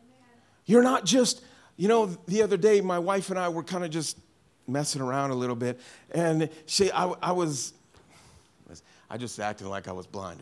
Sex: male